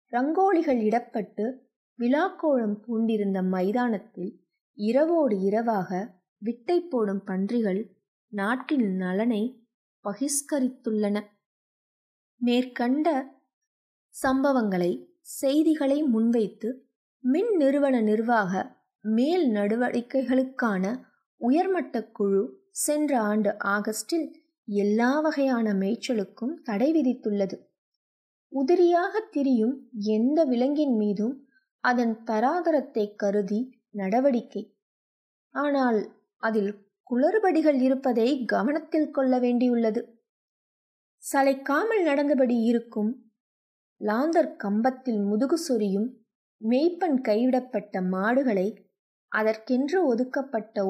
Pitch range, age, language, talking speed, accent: 210-275 Hz, 20-39, Tamil, 70 wpm, native